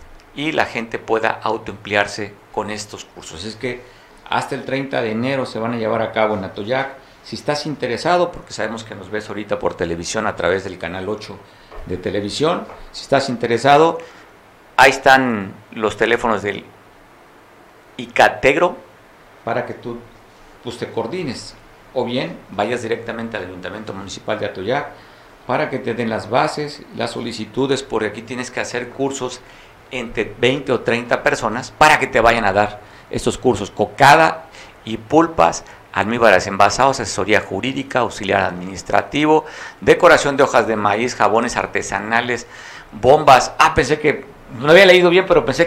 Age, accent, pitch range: 50-69, Mexican, 105-140 Hz